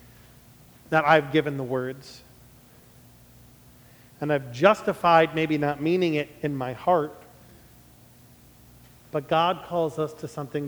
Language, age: English, 40-59